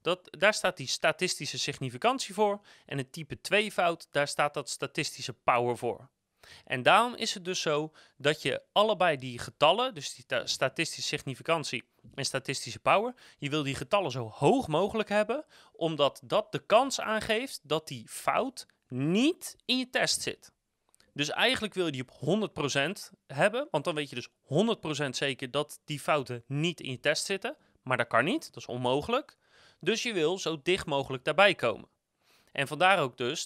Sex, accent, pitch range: male, Dutch, 135-190 Hz